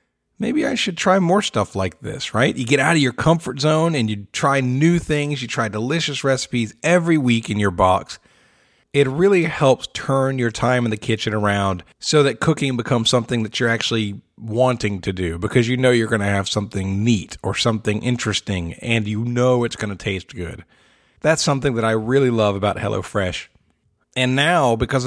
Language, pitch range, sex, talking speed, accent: English, 110-150 Hz, male, 195 wpm, American